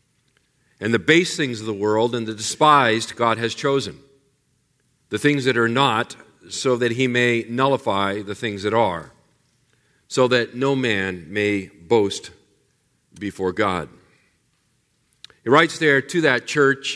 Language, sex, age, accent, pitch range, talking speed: English, male, 50-69, American, 105-135 Hz, 145 wpm